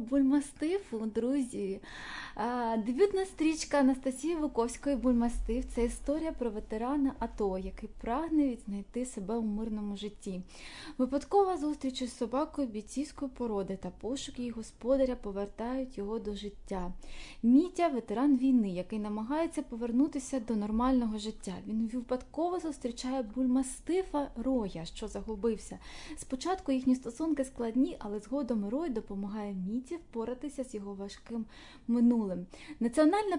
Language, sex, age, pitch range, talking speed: Ukrainian, female, 20-39, 220-285 Hz, 115 wpm